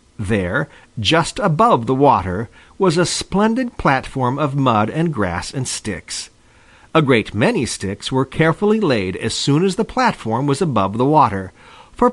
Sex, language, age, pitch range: male, Japanese, 50-69, 105-175 Hz